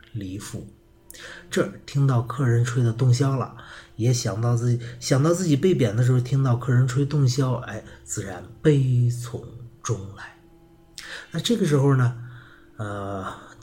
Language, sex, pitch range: Chinese, male, 115-145 Hz